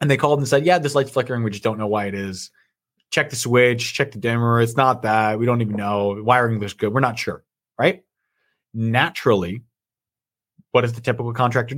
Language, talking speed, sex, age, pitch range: English, 215 wpm, male, 20-39, 110-150 Hz